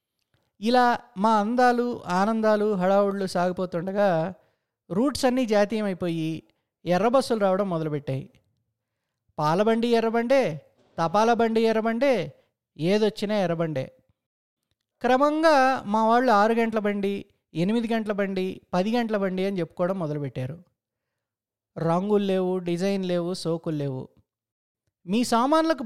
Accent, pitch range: native, 170-235 Hz